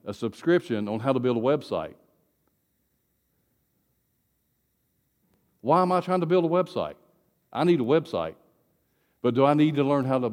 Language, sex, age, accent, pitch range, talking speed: English, male, 50-69, American, 120-165 Hz, 165 wpm